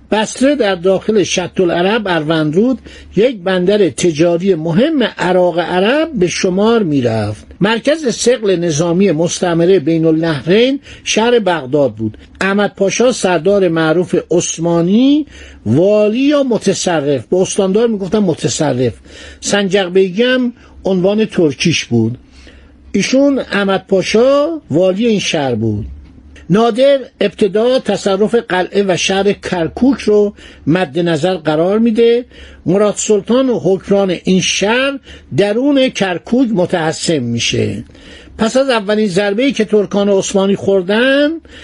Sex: male